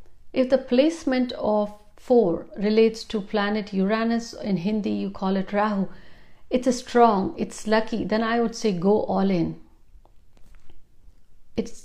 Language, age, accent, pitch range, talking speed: Hindi, 60-79, native, 195-235 Hz, 140 wpm